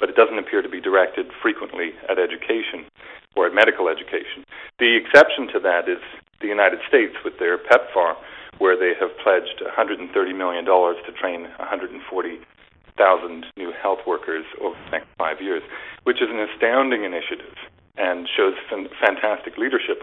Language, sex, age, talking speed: English, male, 40-59, 155 wpm